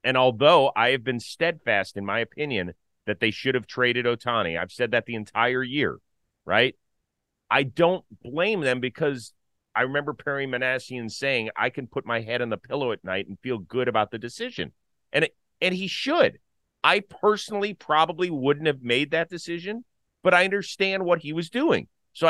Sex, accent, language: male, American, English